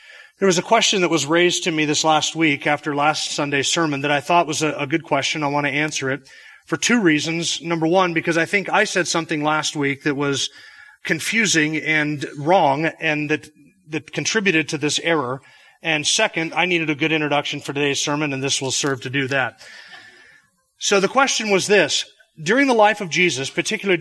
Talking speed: 200 wpm